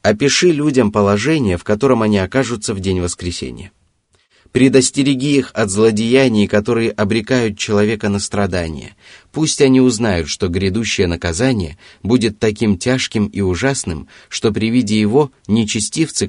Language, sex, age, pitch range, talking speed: Russian, male, 30-49, 90-125 Hz, 130 wpm